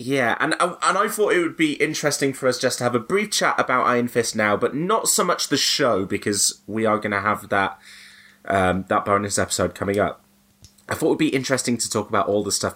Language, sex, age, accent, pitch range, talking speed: English, male, 20-39, British, 90-110 Hz, 245 wpm